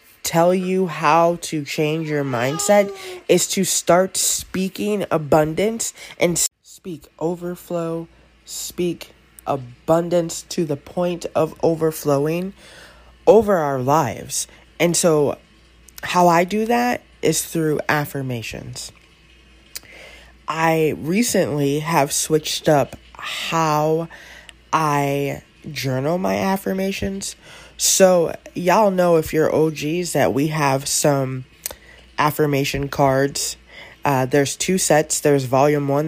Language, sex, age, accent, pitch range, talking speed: English, female, 20-39, American, 140-170 Hz, 105 wpm